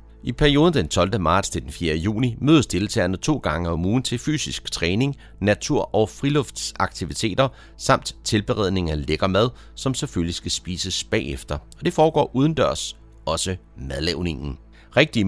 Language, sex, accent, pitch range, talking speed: Danish, male, native, 85-125 Hz, 150 wpm